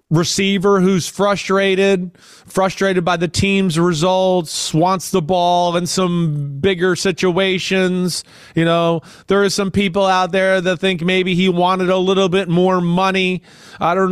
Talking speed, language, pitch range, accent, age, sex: 150 wpm, English, 170-205 Hz, American, 30-49, male